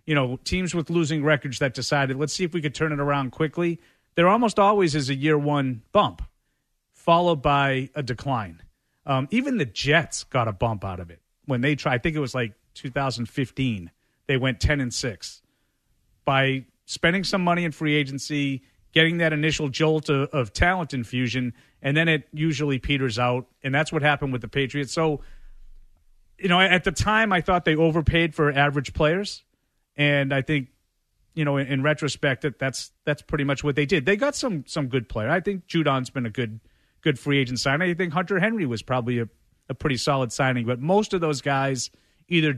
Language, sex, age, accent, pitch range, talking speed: English, male, 40-59, American, 130-155 Hz, 200 wpm